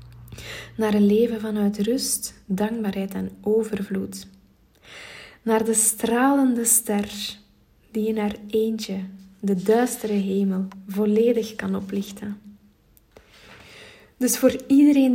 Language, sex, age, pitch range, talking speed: Dutch, female, 20-39, 200-225 Hz, 100 wpm